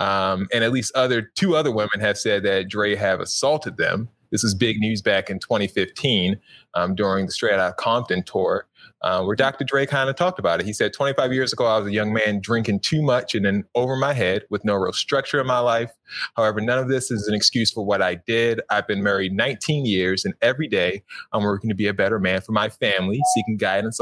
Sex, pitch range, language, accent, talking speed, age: male, 105-130 Hz, English, American, 235 wpm, 20-39